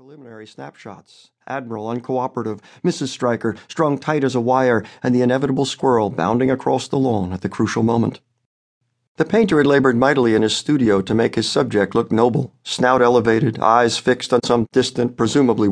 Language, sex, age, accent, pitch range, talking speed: English, male, 50-69, American, 115-145 Hz, 170 wpm